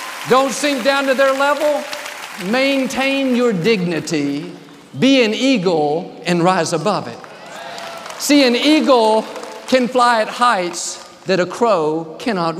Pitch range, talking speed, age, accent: 175-245 Hz, 130 wpm, 50-69, American